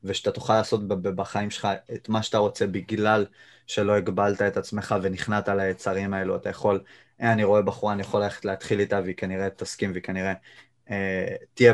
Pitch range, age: 95-110 Hz, 20-39